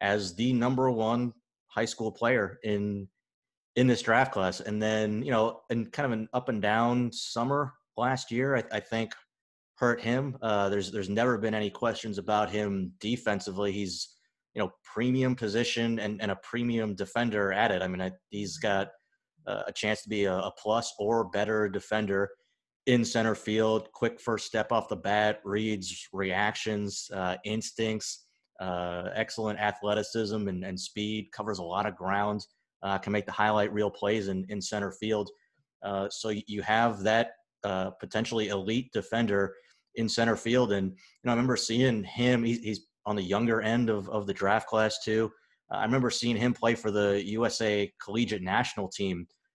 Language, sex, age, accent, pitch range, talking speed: English, male, 30-49, American, 100-115 Hz, 175 wpm